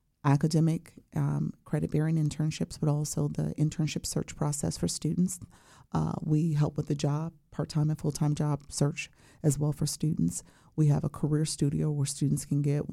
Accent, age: American, 40-59